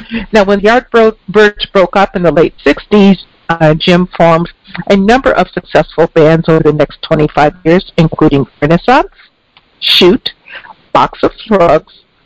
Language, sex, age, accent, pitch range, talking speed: English, female, 50-69, American, 165-220 Hz, 140 wpm